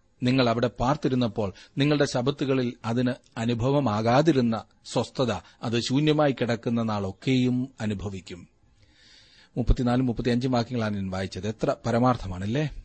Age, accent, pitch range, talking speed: 40-59, native, 110-130 Hz, 65 wpm